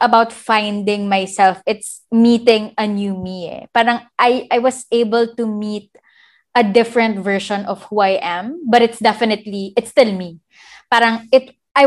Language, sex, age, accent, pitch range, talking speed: English, female, 20-39, Filipino, 195-240 Hz, 160 wpm